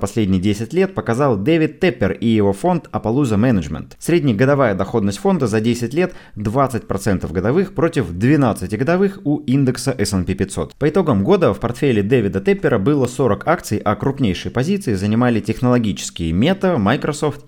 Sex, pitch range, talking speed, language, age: male, 100-145 Hz, 150 wpm, Russian, 20-39